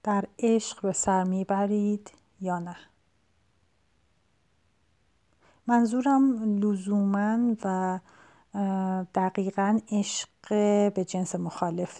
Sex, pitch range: female, 190-225 Hz